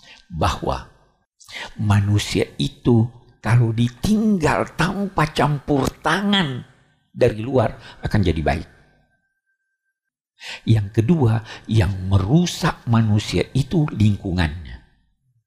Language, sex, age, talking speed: Indonesian, male, 50-69, 80 wpm